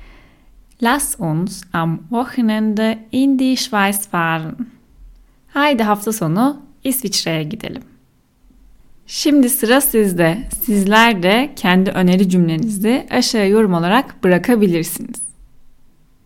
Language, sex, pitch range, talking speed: Turkish, female, 185-250 Hz, 80 wpm